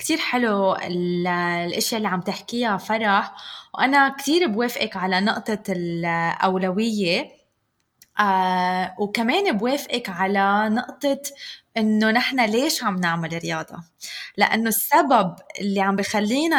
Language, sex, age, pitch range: Arabic, female, 20-39, 200-280 Hz